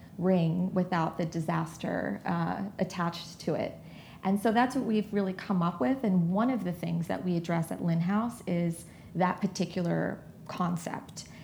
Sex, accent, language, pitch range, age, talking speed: female, American, English, 175-200 Hz, 30-49, 170 wpm